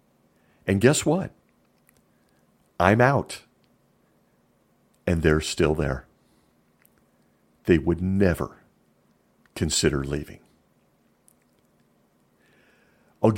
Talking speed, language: 65 wpm, English